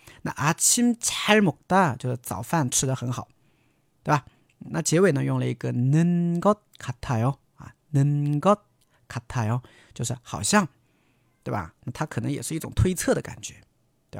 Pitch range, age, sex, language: 120-175 Hz, 40-59, male, Chinese